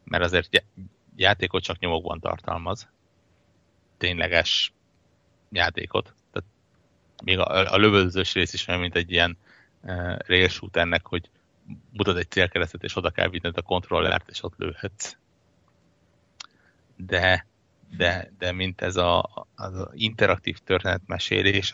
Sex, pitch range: male, 90-105 Hz